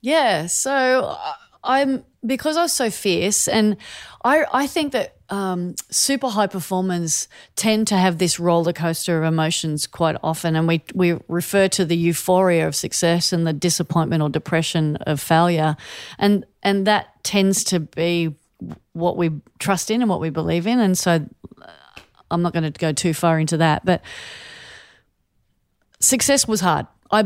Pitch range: 160-195 Hz